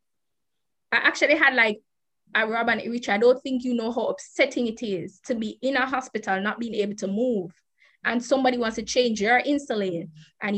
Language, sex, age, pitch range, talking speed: English, female, 20-39, 210-265 Hz, 185 wpm